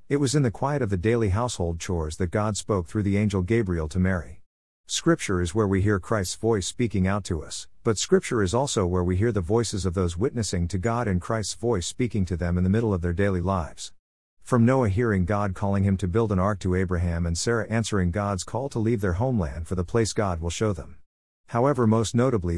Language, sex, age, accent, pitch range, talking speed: English, male, 50-69, American, 90-115 Hz, 235 wpm